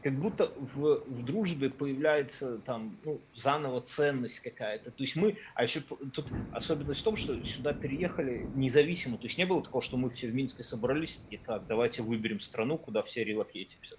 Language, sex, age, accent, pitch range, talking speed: Russian, male, 30-49, native, 120-150 Hz, 185 wpm